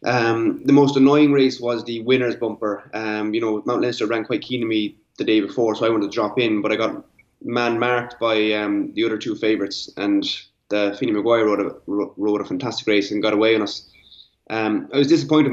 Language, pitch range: English, 105-125 Hz